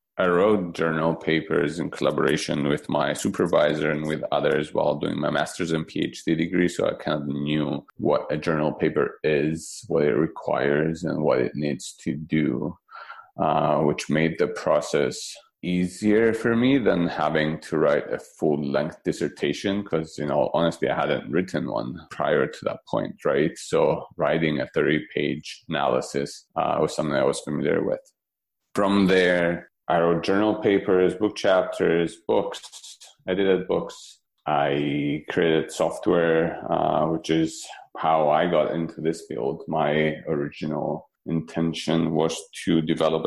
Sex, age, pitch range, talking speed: male, 30-49, 80-90 Hz, 150 wpm